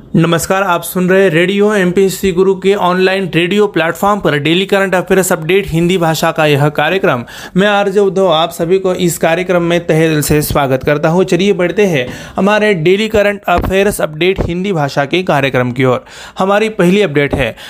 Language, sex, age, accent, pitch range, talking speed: Marathi, male, 30-49, native, 165-200 Hz, 185 wpm